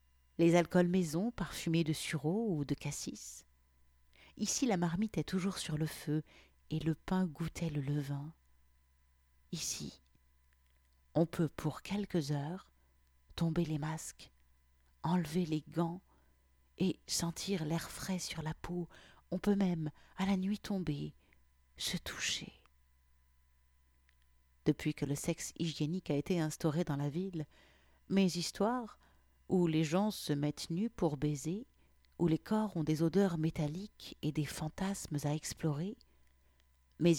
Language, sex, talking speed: French, female, 135 wpm